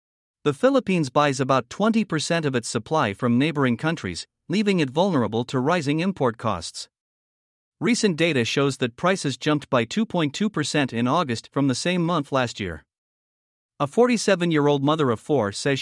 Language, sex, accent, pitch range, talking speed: English, male, American, 130-170 Hz, 150 wpm